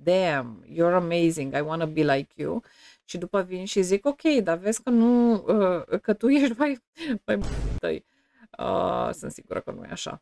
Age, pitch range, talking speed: 30-49, 180-240 Hz, 175 wpm